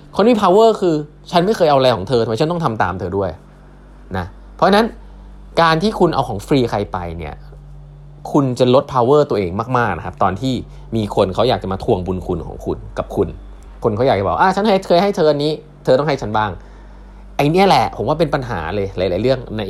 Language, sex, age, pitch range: Thai, male, 20-39, 95-150 Hz